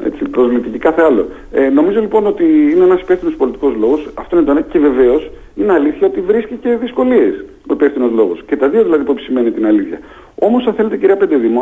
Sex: male